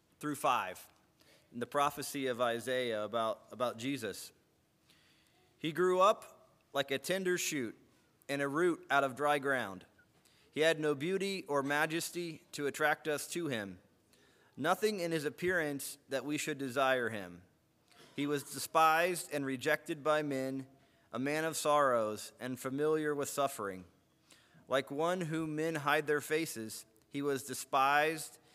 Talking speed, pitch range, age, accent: 145 wpm, 130-160 Hz, 30-49, American